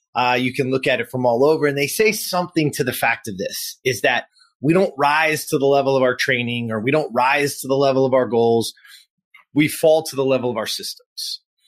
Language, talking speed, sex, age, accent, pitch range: English, 240 wpm, male, 30-49, American, 130-165 Hz